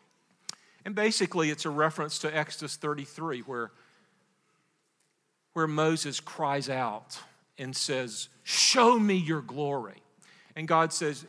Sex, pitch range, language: male, 145-190 Hz, English